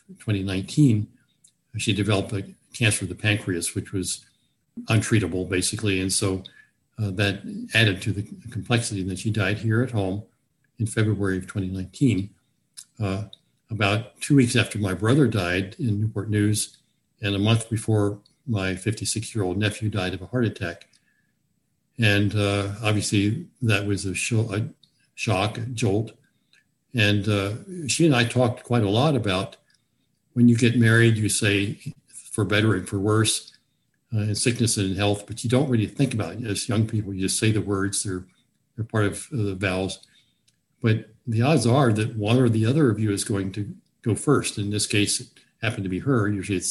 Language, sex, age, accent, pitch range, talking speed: English, male, 60-79, American, 100-120 Hz, 175 wpm